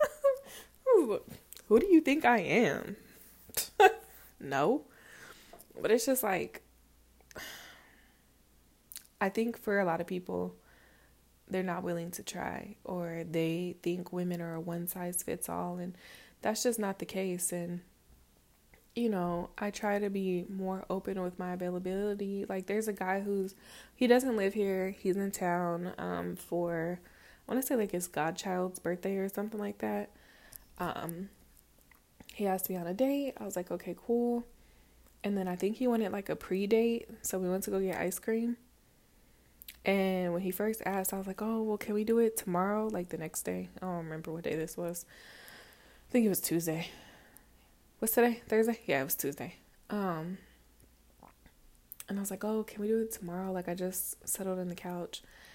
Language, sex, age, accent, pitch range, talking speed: English, female, 20-39, American, 175-210 Hz, 175 wpm